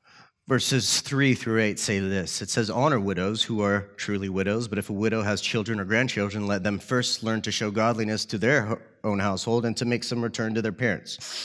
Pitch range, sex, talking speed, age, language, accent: 100-125 Hz, male, 215 wpm, 30-49, English, American